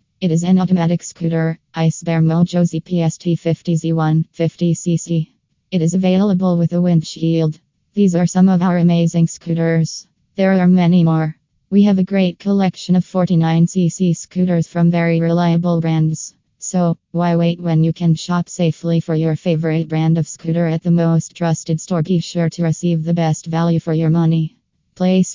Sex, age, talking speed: female, 20-39, 165 wpm